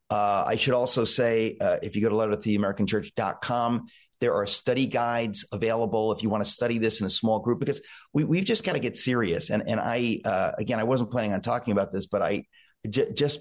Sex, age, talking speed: male, 40-59, 215 wpm